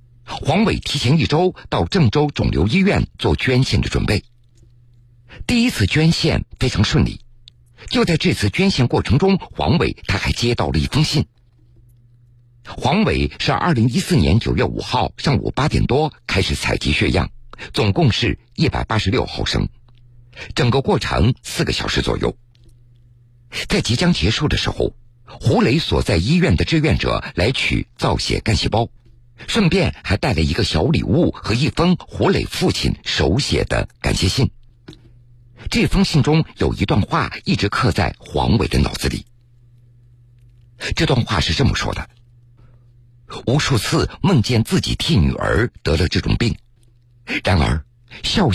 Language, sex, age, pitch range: Chinese, male, 50-69, 115-130 Hz